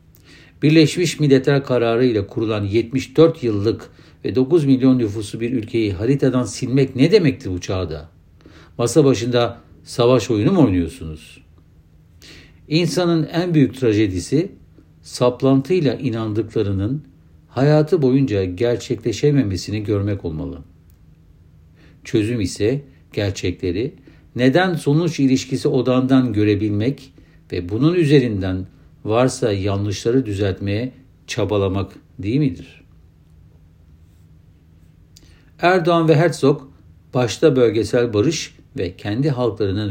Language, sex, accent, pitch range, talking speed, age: Turkish, male, native, 85-130 Hz, 90 wpm, 60-79